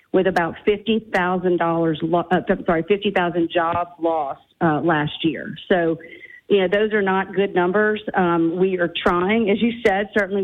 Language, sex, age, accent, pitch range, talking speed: English, female, 40-59, American, 175-200 Hz, 150 wpm